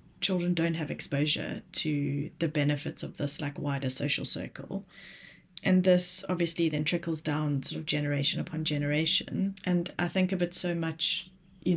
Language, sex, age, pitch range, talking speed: English, female, 20-39, 155-185 Hz, 165 wpm